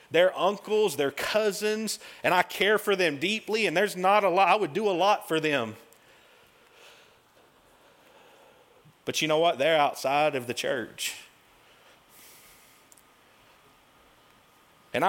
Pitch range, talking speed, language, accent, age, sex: 120-190 Hz, 125 wpm, English, American, 40-59, male